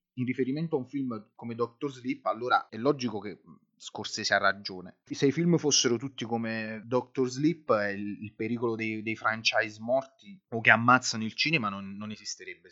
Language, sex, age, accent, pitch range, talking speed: Italian, male, 30-49, native, 105-140 Hz, 180 wpm